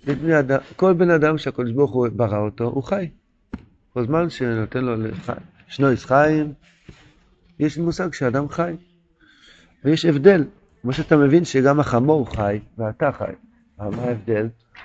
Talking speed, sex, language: 135 wpm, male, Hebrew